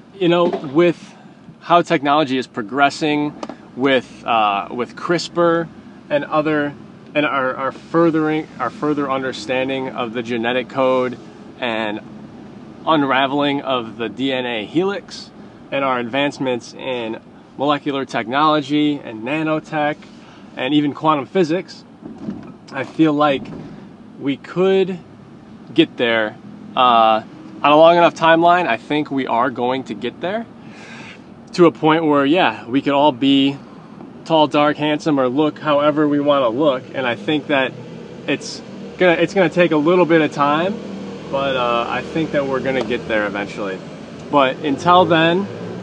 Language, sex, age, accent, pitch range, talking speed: English, male, 20-39, American, 130-165 Hz, 145 wpm